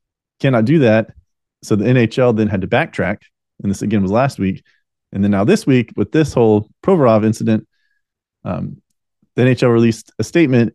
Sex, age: male, 30-49